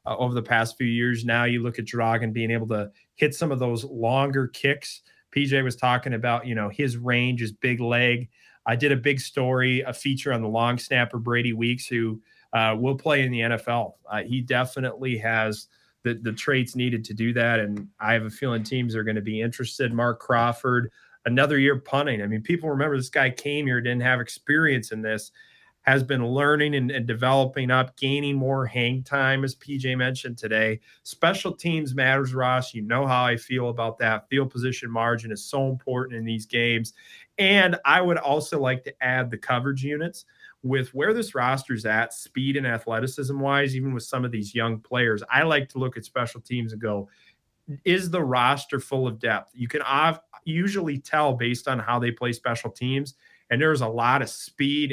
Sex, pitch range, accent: male, 115-140 Hz, American